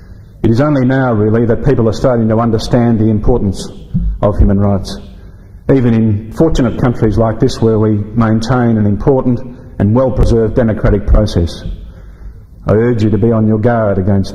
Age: 50-69